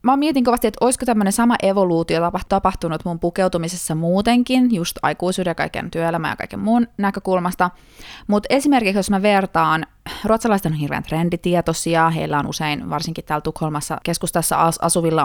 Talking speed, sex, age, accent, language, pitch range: 155 wpm, female, 20-39, native, Finnish, 170-215 Hz